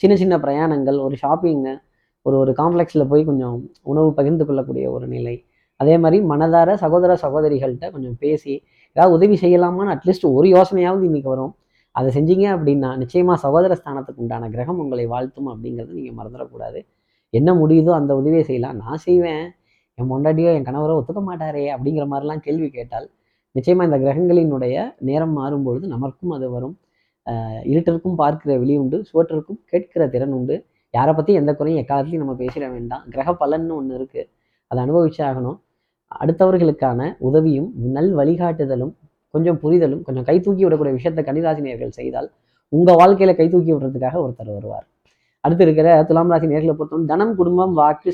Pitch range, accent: 130-170 Hz, native